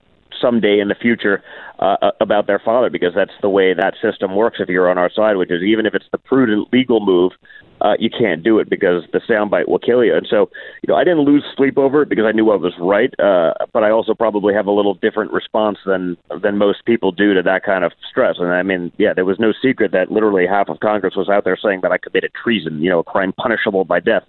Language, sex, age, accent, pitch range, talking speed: English, male, 40-59, American, 95-120 Hz, 255 wpm